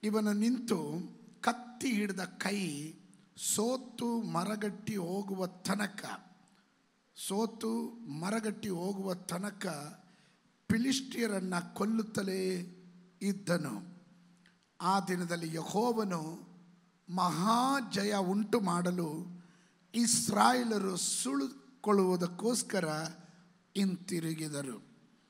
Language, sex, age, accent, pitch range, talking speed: Kannada, male, 50-69, native, 180-215 Hz, 55 wpm